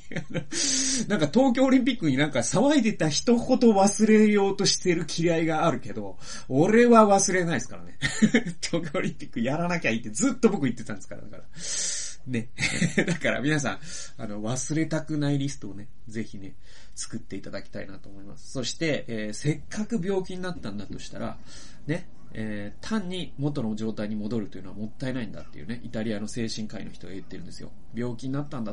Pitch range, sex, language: 110-165 Hz, male, Japanese